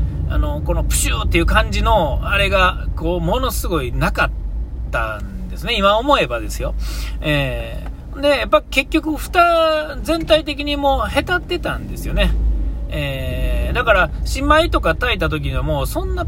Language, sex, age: Japanese, male, 40-59